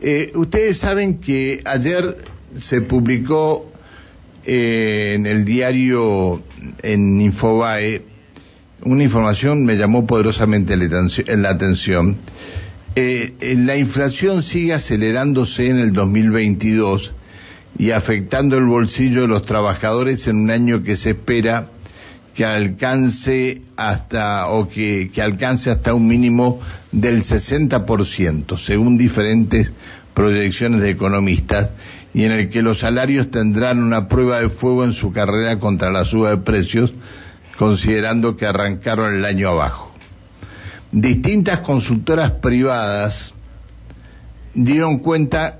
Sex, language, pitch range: male, Spanish, 100-125 Hz